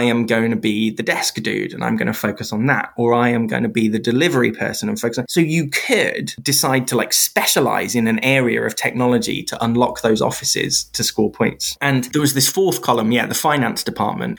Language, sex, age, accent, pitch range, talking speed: English, male, 20-39, British, 115-140 Hz, 235 wpm